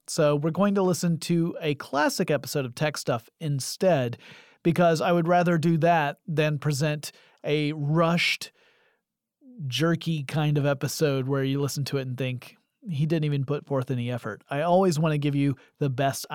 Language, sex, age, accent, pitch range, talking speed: English, male, 30-49, American, 140-185 Hz, 180 wpm